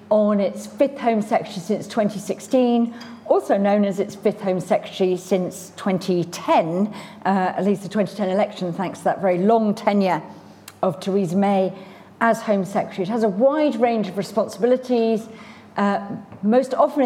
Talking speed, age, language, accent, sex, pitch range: 155 wpm, 40-59, English, British, female, 190-230 Hz